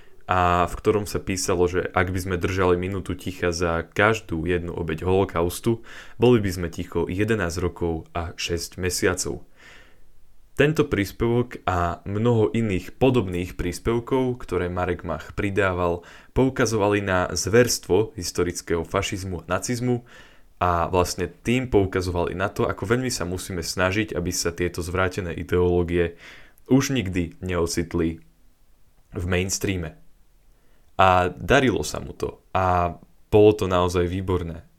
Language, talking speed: Slovak, 130 wpm